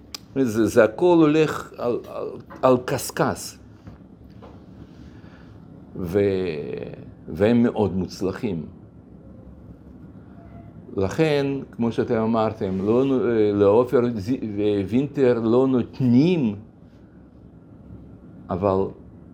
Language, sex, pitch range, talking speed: Hebrew, male, 95-120 Hz, 70 wpm